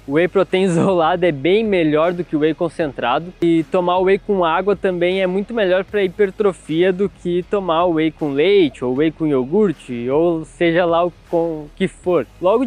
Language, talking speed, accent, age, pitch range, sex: Portuguese, 205 wpm, Brazilian, 20-39, 165-205 Hz, male